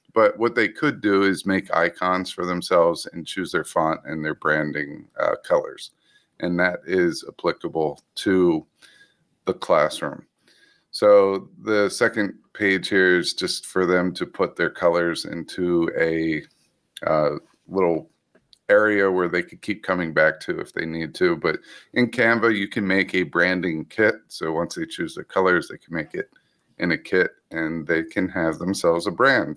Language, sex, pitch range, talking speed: English, male, 90-115 Hz, 170 wpm